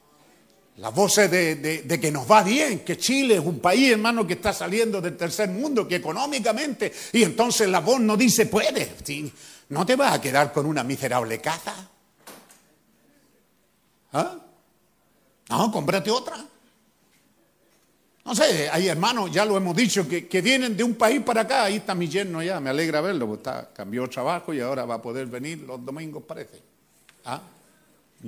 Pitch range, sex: 165-245 Hz, male